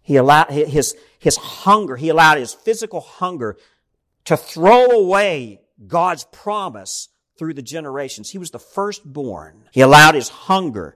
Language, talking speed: English, 140 wpm